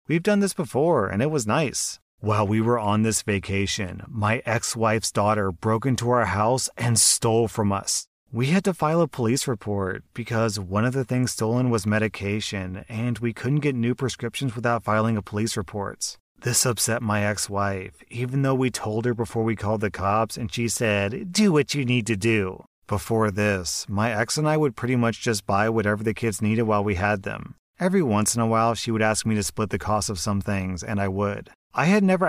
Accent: American